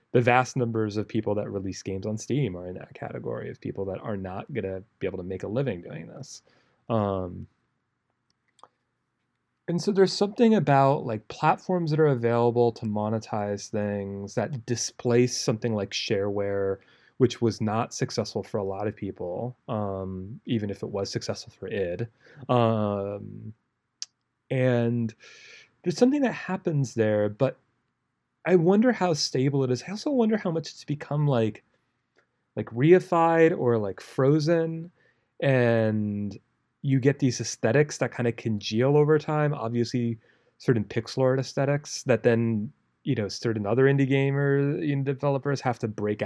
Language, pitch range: English, 110-145 Hz